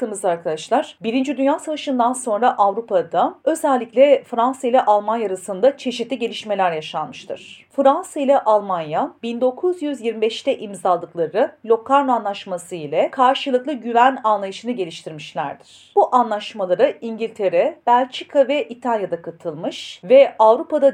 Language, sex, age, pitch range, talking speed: Turkish, female, 40-59, 200-265 Hz, 100 wpm